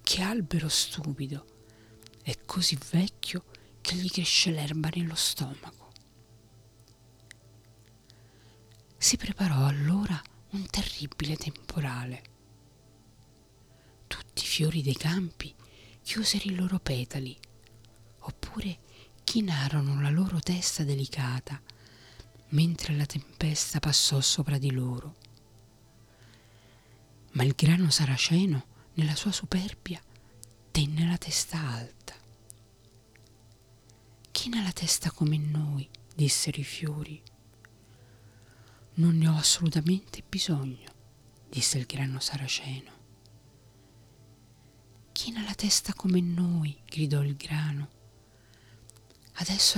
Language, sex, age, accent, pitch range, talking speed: Italian, female, 40-59, native, 110-160 Hz, 95 wpm